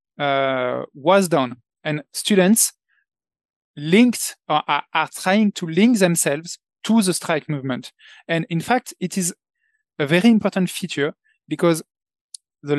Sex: male